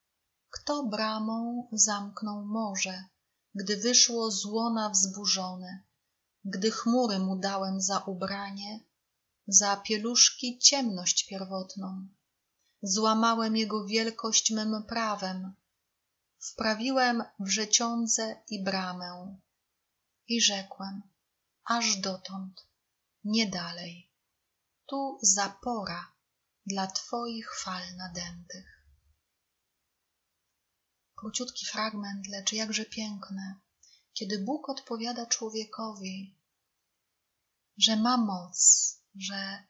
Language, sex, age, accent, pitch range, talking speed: Polish, female, 30-49, native, 195-225 Hz, 80 wpm